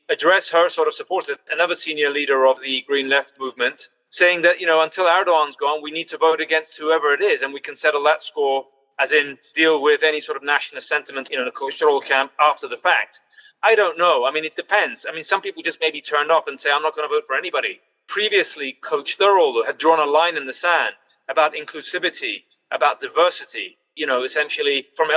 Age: 30-49